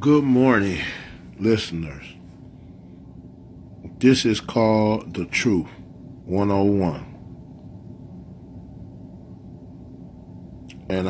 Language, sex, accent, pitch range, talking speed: English, male, American, 90-110 Hz, 55 wpm